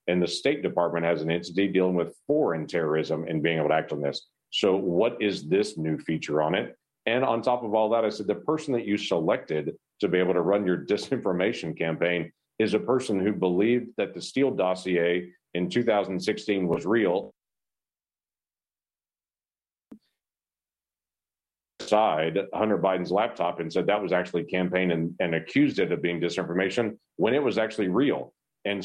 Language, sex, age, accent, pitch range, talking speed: English, male, 40-59, American, 85-105 Hz, 175 wpm